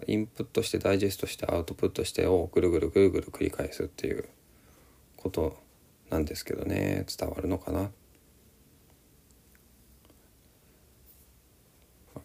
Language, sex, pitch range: Japanese, male, 75-110 Hz